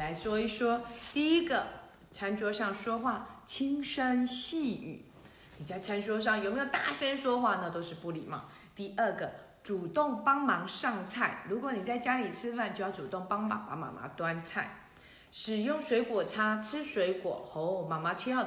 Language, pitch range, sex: Chinese, 195-270 Hz, female